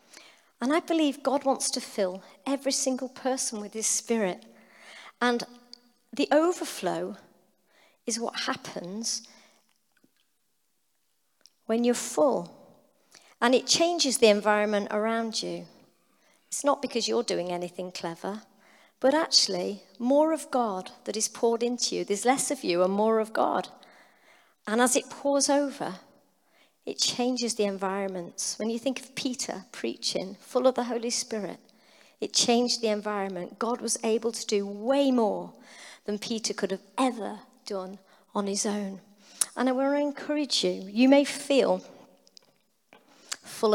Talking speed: 145 wpm